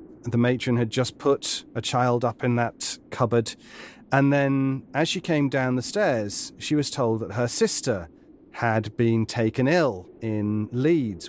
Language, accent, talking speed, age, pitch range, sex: English, British, 165 wpm, 40-59, 110-140 Hz, male